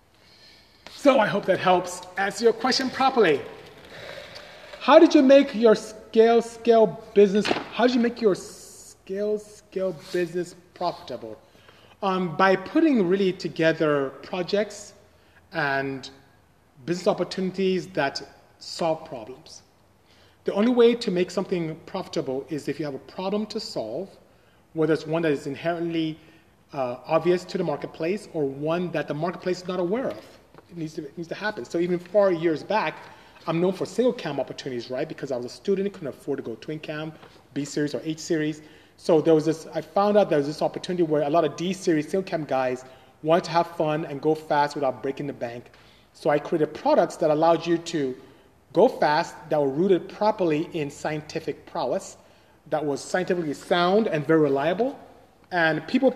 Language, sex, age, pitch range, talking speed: English, male, 30-49, 150-195 Hz, 175 wpm